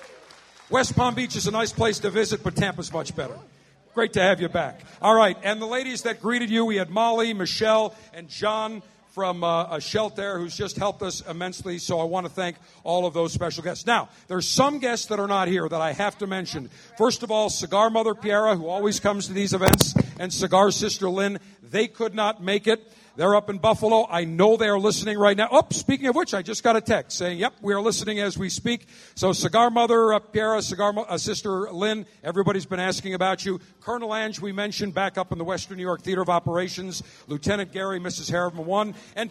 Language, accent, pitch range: English, American, 185-220 Hz